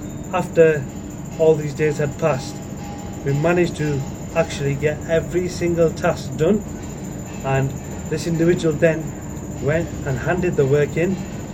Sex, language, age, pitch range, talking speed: male, English, 30-49, 140-165 Hz, 130 wpm